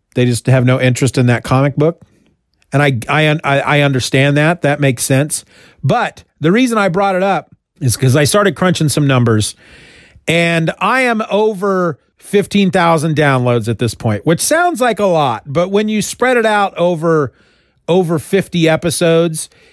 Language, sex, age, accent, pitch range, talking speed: English, male, 40-59, American, 145-205 Hz, 170 wpm